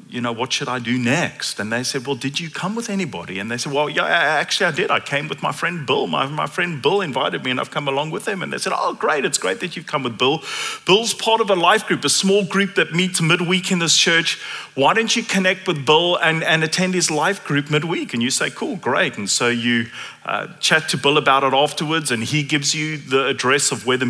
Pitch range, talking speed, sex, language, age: 125-165 Hz, 265 wpm, male, English, 30-49